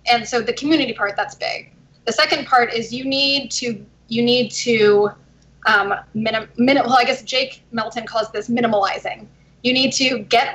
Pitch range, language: 225-275 Hz, English